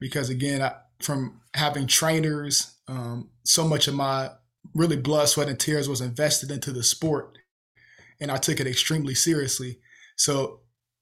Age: 20-39